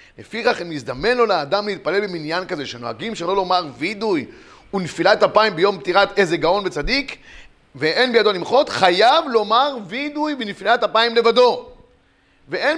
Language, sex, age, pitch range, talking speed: Hebrew, male, 30-49, 180-240 Hz, 135 wpm